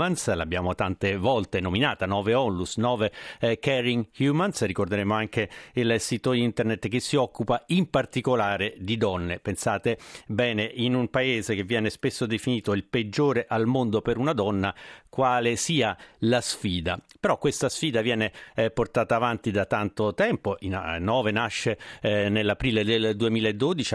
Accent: native